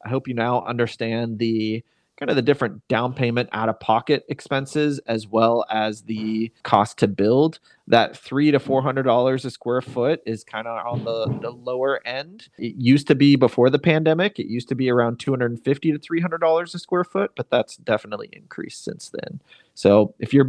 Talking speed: 185 wpm